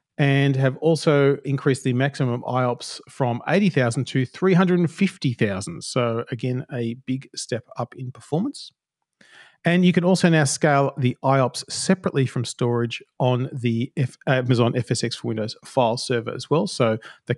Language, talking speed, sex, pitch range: English, 145 wpm, male, 125-160 Hz